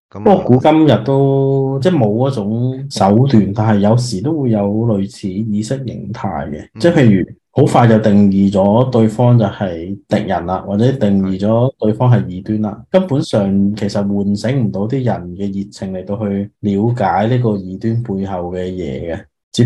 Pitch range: 100-120 Hz